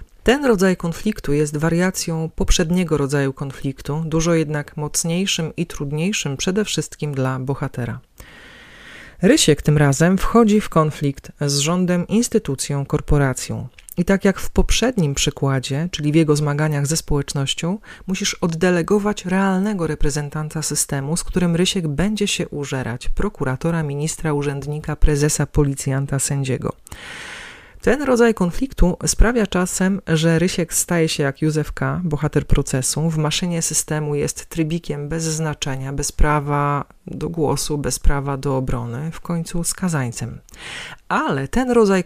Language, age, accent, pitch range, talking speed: Polish, 40-59, native, 145-180 Hz, 130 wpm